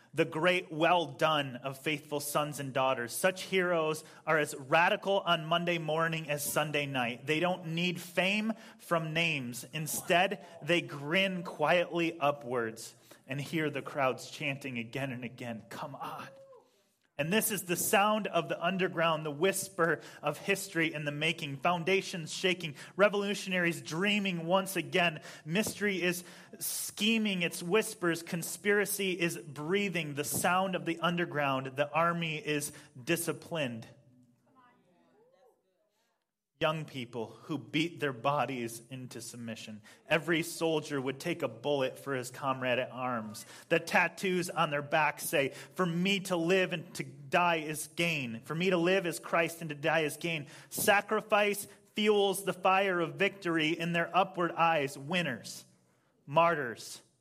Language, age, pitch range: English, 30-49, 145-185 Hz